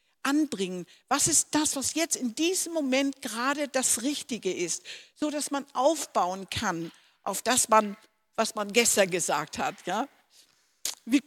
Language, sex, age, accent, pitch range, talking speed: German, female, 50-69, German, 210-275 Hz, 150 wpm